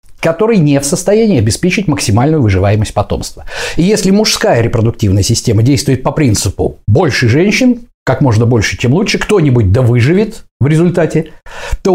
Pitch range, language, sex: 110-170 Hz, Russian, male